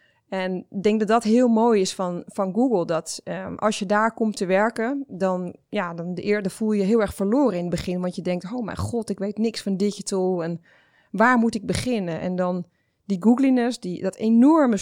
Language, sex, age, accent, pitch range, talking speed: Dutch, female, 20-39, Dutch, 185-230 Hz, 230 wpm